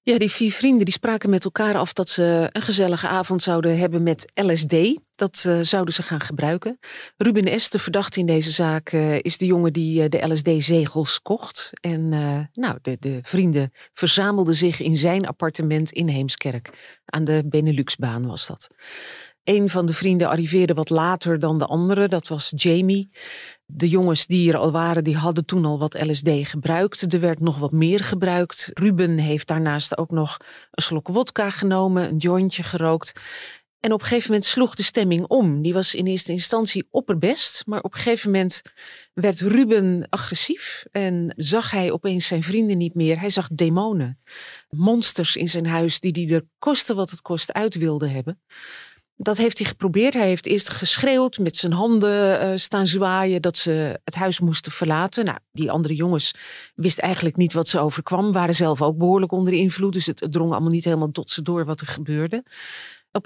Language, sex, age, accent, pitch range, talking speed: Dutch, female, 40-59, Dutch, 160-195 Hz, 190 wpm